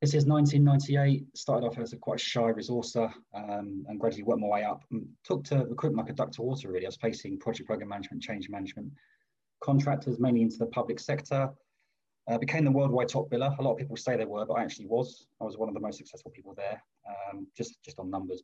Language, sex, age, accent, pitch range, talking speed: English, male, 20-39, British, 115-135 Hz, 235 wpm